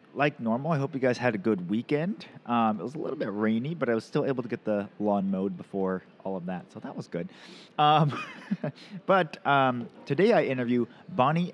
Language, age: English, 30-49